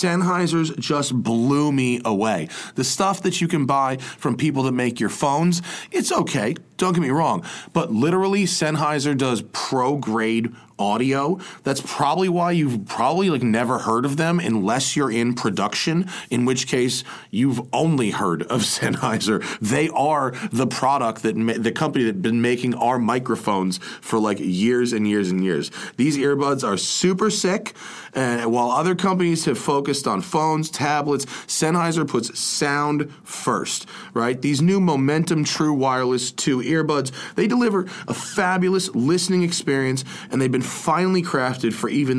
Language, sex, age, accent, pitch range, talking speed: English, male, 30-49, American, 120-165 Hz, 160 wpm